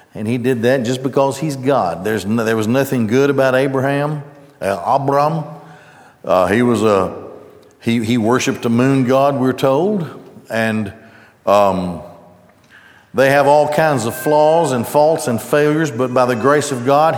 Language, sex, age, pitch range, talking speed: English, male, 60-79, 125-150 Hz, 170 wpm